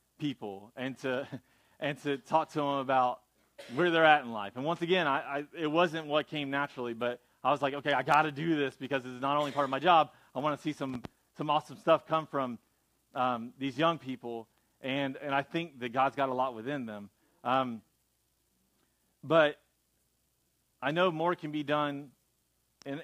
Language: English